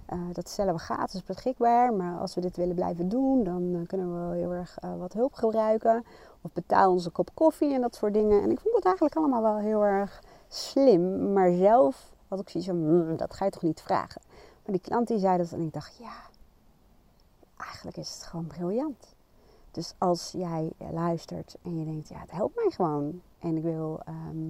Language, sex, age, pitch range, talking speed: Dutch, female, 30-49, 160-210 Hz, 210 wpm